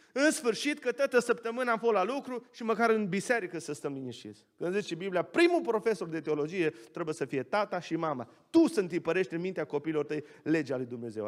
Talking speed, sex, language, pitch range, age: 205 wpm, male, Romanian, 190-260 Hz, 30-49